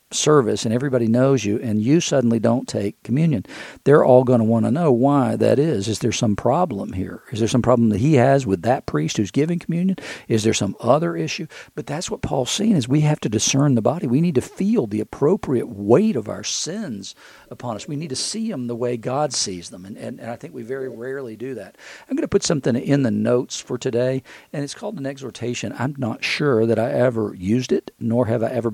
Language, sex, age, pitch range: English, male, 50-69, 110-135 Hz